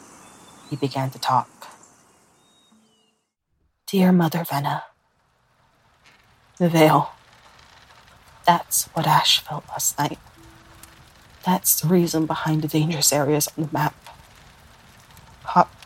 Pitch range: 145-175 Hz